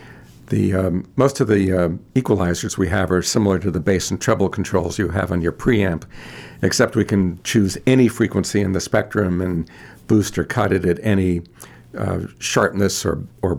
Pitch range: 90-105 Hz